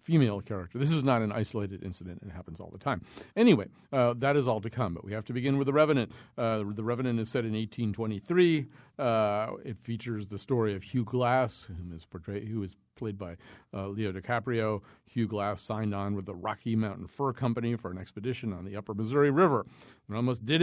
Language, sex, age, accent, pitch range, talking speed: English, male, 50-69, American, 105-125 Hz, 210 wpm